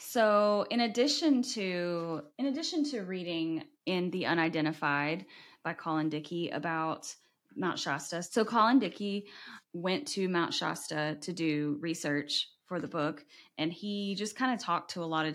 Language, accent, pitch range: English, American, 155-185 Hz